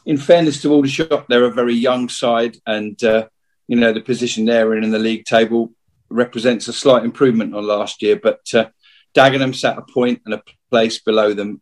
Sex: male